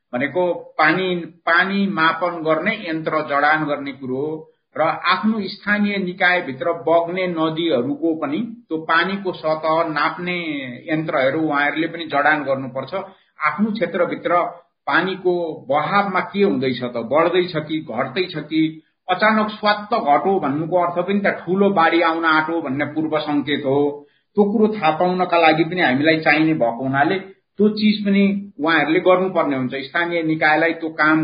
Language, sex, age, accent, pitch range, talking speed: English, male, 50-69, Indian, 155-195 Hz, 110 wpm